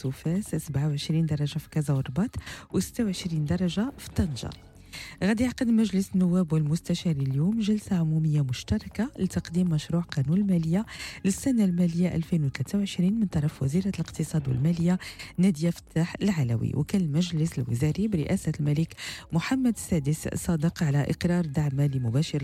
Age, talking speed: 40-59, 125 wpm